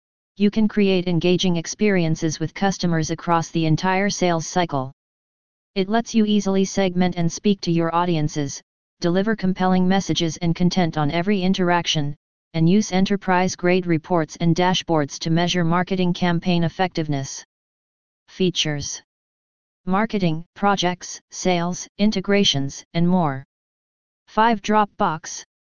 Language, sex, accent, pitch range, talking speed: English, female, American, 165-190 Hz, 115 wpm